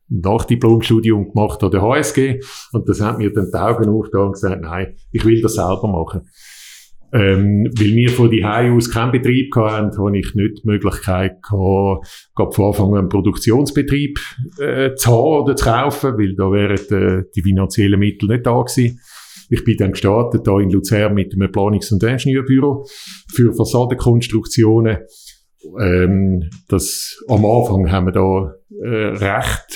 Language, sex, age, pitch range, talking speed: German, male, 50-69, 100-120 Hz, 160 wpm